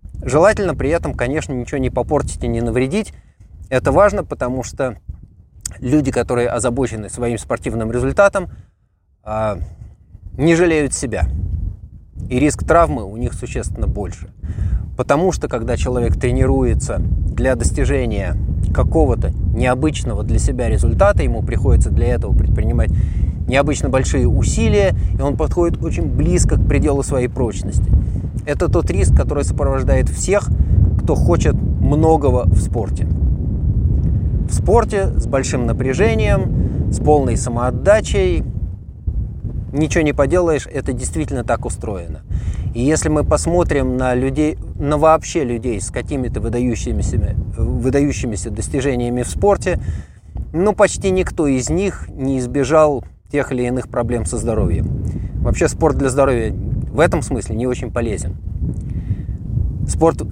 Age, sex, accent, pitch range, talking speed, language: 20-39, male, native, 90-130 Hz, 125 wpm, Russian